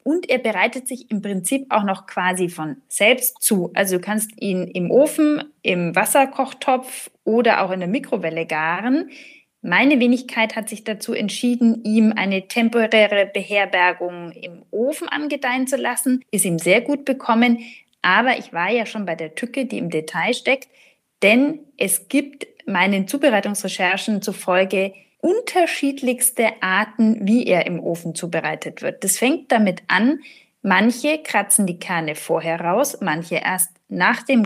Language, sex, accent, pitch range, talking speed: German, female, German, 190-260 Hz, 150 wpm